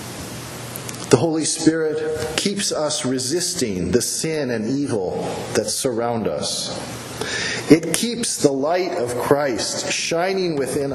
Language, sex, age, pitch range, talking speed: English, male, 40-59, 120-165 Hz, 115 wpm